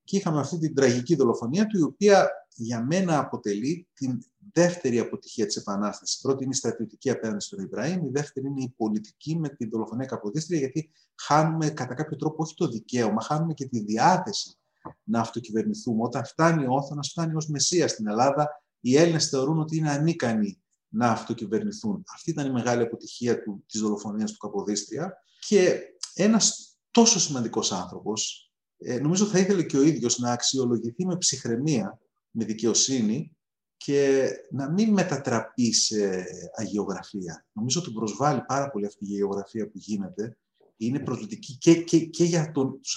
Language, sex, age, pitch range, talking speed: Greek, male, 30-49, 115-170 Hz, 160 wpm